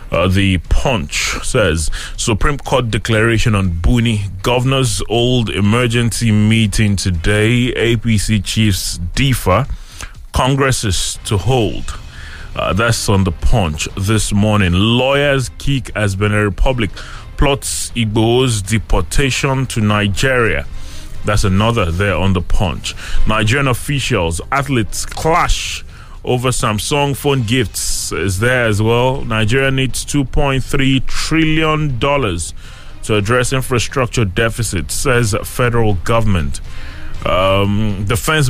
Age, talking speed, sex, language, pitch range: 30-49, 110 wpm, male, English, 95-135 Hz